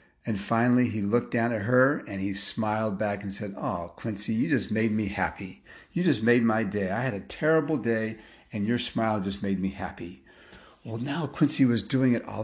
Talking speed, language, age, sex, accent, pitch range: 210 wpm, English, 40-59, male, American, 105-130 Hz